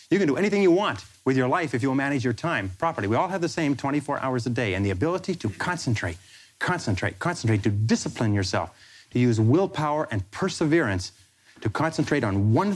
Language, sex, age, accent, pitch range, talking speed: English, male, 30-49, American, 110-145 Hz, 200 wpm